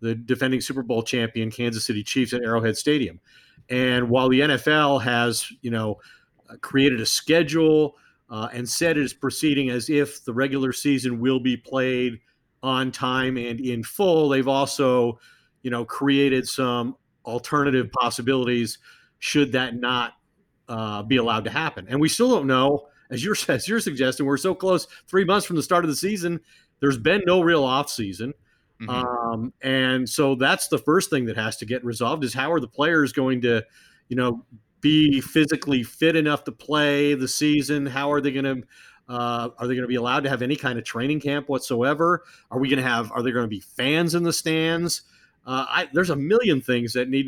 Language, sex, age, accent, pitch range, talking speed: English, male, 40-59, American, 125-150 Hz, 195 wpm